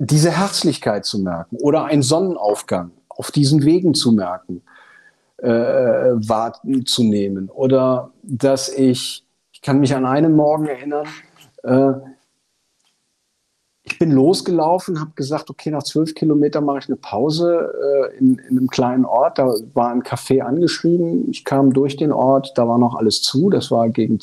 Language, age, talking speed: German, 50-69, 160 wpm